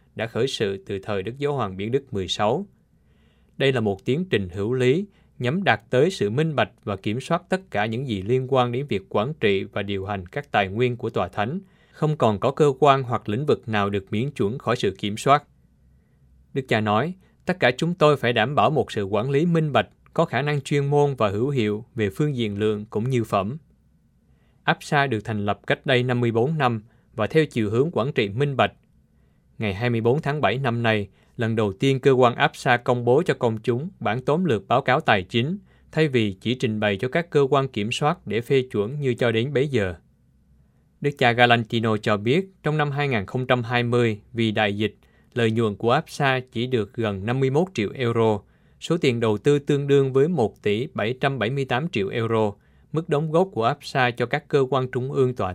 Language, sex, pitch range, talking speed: Vietnamese, male, 105-140 Hz, 215 wpm